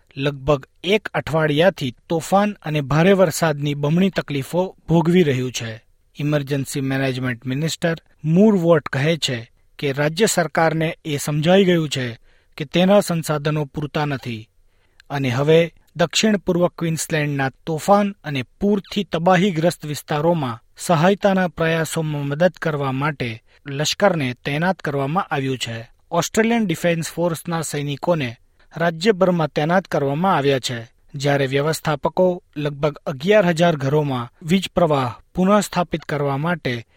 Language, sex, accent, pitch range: Gujarati, male, native, 140-180 Hz